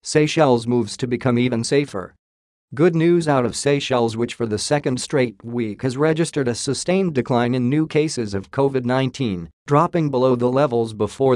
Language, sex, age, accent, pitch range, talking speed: English, male, 40-59, American, 115-145 Hz, 170 wpm